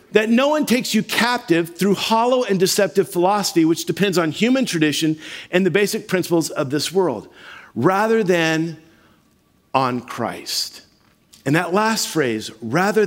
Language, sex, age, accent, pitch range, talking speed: English, male, 50-69, American, 165-225 Hz, 145 wpm